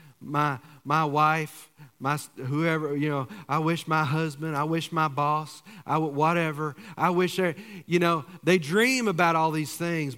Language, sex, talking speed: English, male, 175 wpm